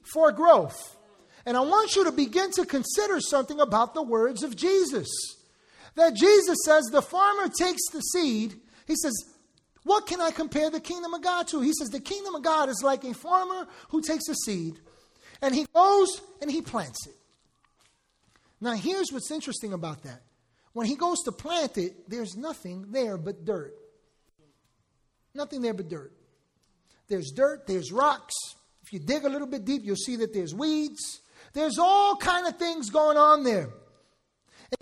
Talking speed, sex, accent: 175 wpm, male, American